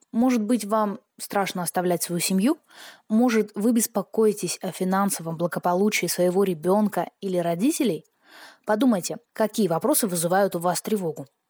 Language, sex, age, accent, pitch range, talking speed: Russian, female, 20-39, native, 180-230 Hz, 125 wpm